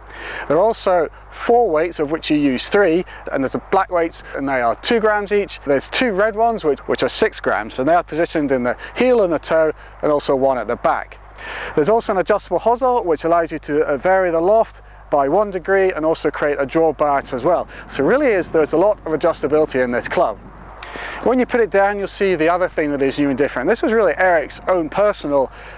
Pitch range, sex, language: 150-195 Hz, male, English